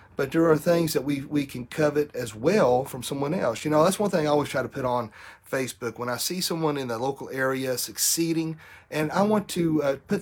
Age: 40-59